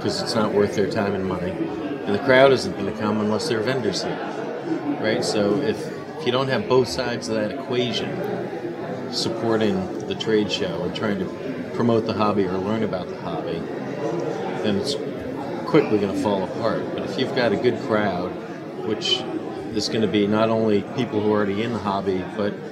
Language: English